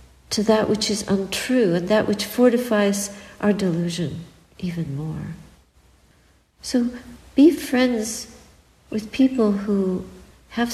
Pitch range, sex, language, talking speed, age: 180-230 Hz, female, English, 110 wpm, 60-79